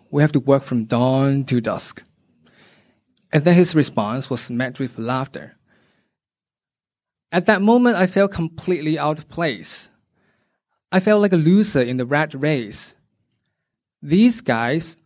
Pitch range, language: 140-185 Hz, English